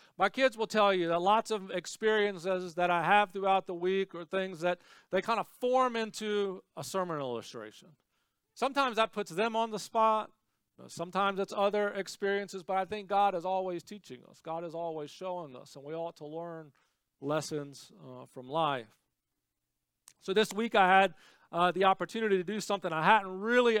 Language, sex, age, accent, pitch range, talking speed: English, male, 40-59, American, 170-215 Hz, 185 wpm